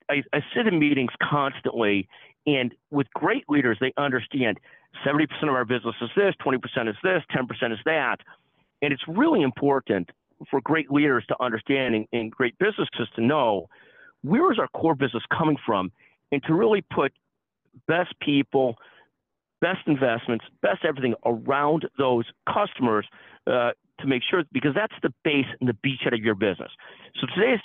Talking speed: 165 wpm